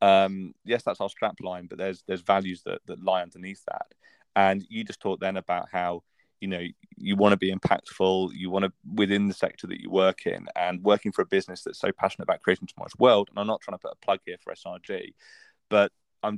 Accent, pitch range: British, 95-110 Hz